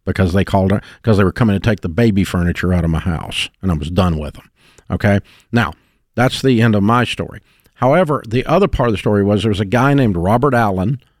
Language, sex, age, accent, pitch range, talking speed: English, male, 50-69, American, 100-125 Hz, 240 wpm